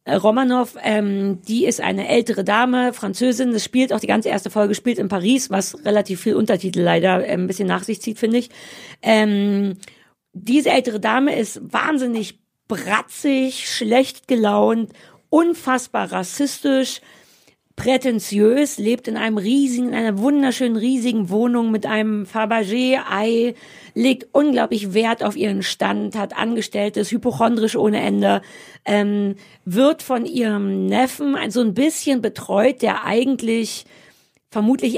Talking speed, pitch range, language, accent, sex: 130 wpm, 200-245 Hz, German, German, female